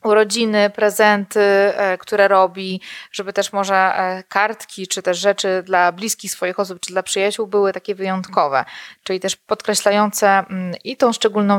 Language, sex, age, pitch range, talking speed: Polish, female, 20-39, 190-225 Hz, 140 wpm